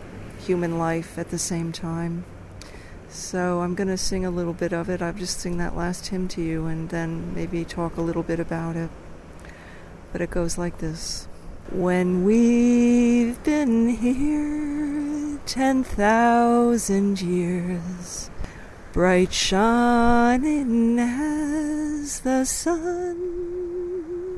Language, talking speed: English, 125 wpm